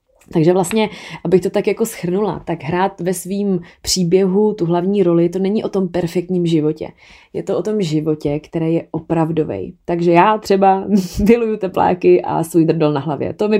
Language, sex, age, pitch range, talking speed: Czech, female, 30-49, 170-195 Hz, 180 wpm